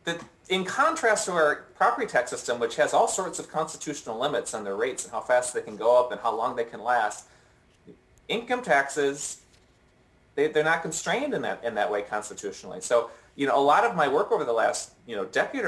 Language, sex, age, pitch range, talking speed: English, male, 30-49, 115-160 Hz, 220 wpm